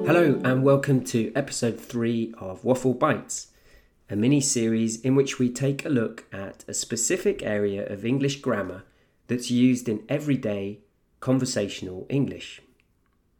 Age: 30-49